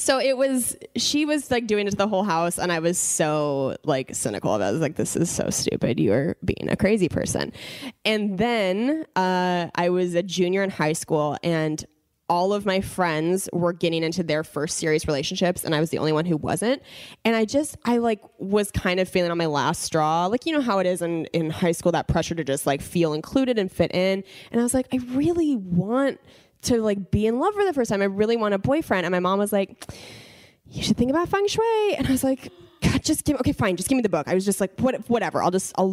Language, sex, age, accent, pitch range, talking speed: English, female, 10-29, American, 170-230 Hz, 250 wpm